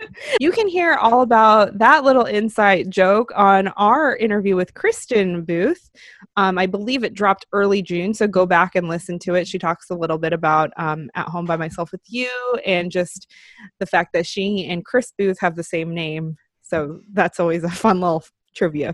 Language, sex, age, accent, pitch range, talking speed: English, female, 20-39, American, 185-250 Hz, 195 wpm